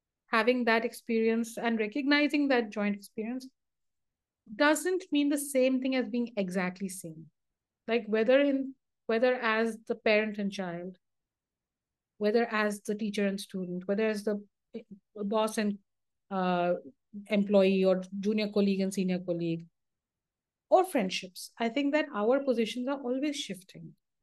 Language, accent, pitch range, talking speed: English, Indian, 205-265 Hz, 135 wpm